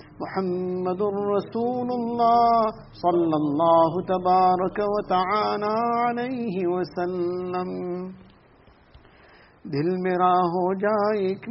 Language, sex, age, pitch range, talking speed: English, male, 50-69, 185-235 Hz, 75 wpm